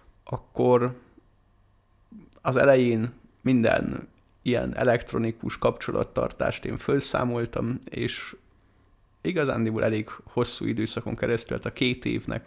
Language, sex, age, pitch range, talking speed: Hungarian, male, 30-49, 105-125 Hz, 90 wpm